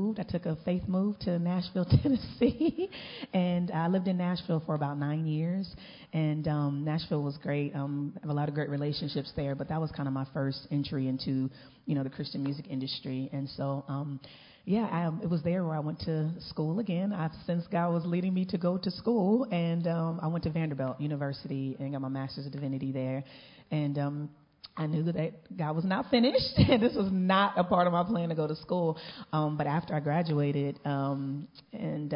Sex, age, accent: female, 30-49, American